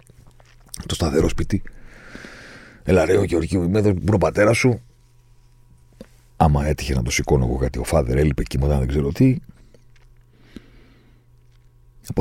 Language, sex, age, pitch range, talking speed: Greek, male, 50-69, 85-120 Hz, 145 wpm